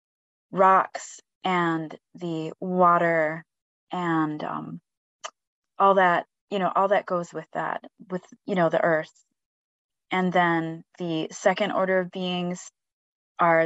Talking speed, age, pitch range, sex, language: 125 wpm, 20-39, 165-195 Hz, female, English